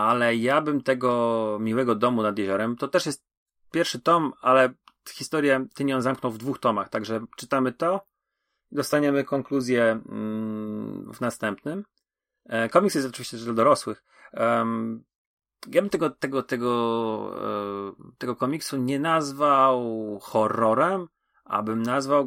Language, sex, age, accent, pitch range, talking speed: Polish, male, 30-49, native, 110-135 Hz, 120 wpm